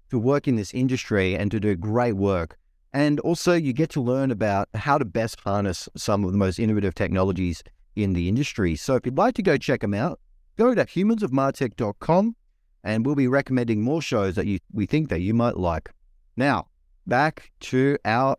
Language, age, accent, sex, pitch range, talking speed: English, 30-49, Australian, male, 110-150 Hz, 195 wpm